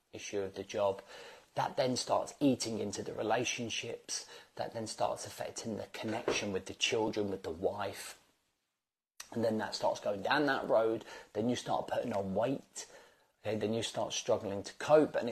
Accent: British